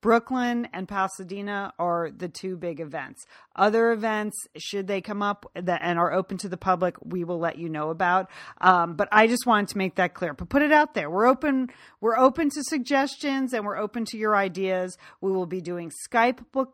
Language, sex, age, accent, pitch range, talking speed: English, female, 40-59, American, 190-250 Hz, 210 wpm